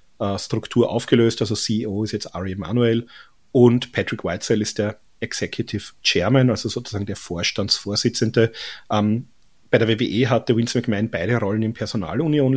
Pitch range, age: 105-125 Hz, 40-59